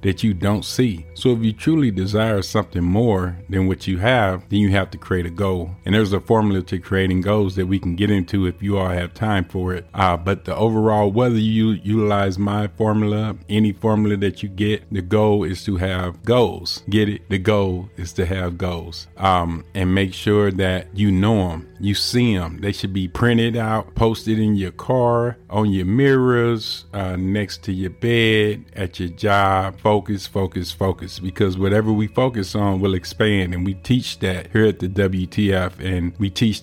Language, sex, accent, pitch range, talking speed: English, male, American, 90-110 Hz, 200 wpm